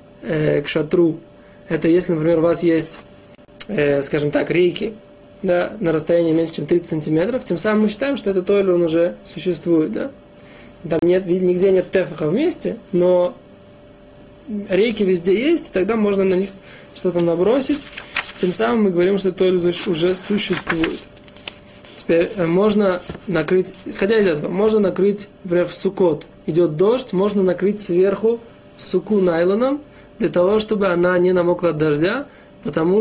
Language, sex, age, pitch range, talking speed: Russian, male, 20-39, 170-200 Hz, 145 wpm